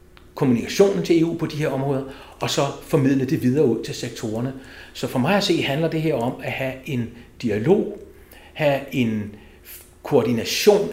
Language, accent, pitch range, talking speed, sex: Danish, native, 120-150 Hz, 170 wpm, male